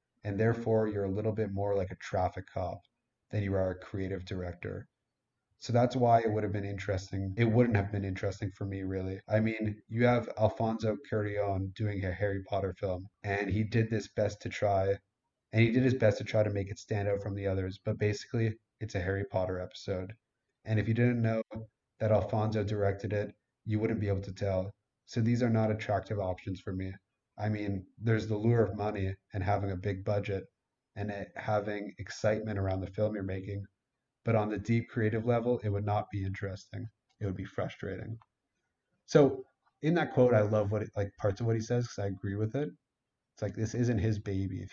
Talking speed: 210 wpm